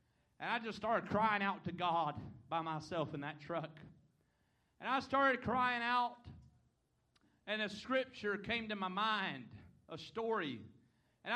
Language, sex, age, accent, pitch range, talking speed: English, male, 40-59, American, 155-250 Hz, 150 wpm